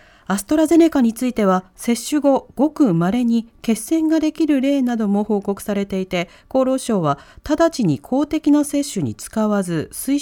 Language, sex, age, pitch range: Japanese, female, 40-59, 195-280 Hz